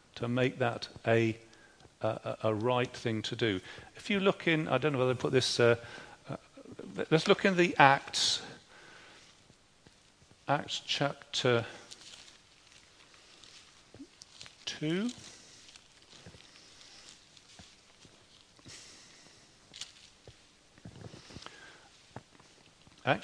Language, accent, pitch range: English, British, 125-165 Hz